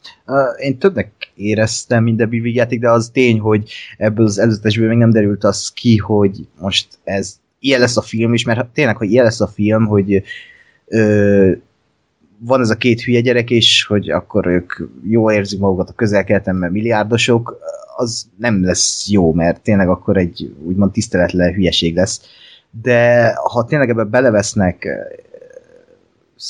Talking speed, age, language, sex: 155 wpm, 30-49, Hungarian, male